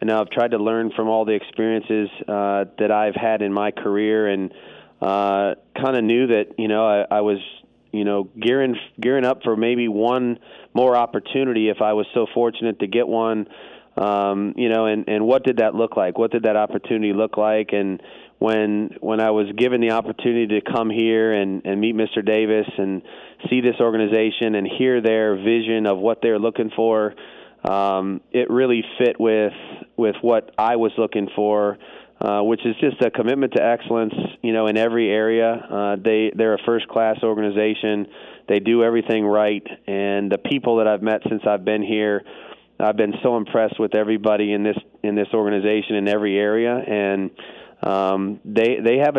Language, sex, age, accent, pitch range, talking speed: English, male, 30-49, American, 105-115 Hz, 190 wpm